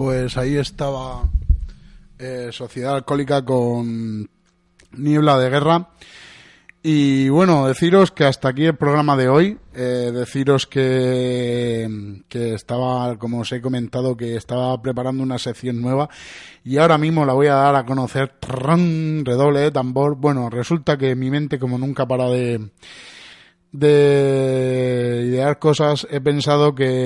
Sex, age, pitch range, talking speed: male, 30-49, 125-145 Hz, 135 wpm